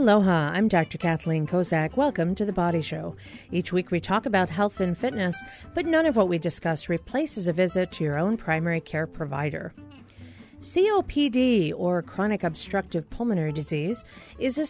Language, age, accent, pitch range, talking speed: English, 40-59, American, 175-250 Hz, 165 wpm